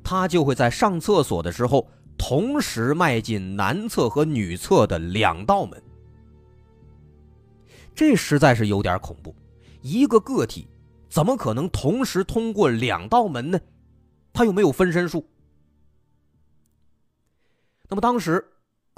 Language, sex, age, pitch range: Chinese, male, 30-49, 110-175 Hz